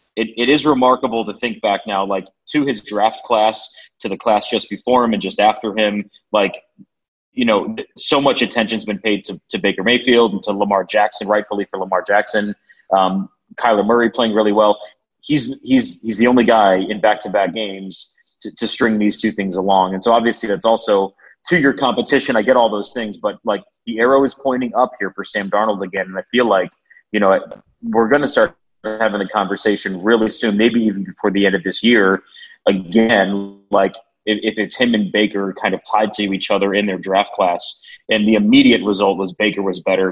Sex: male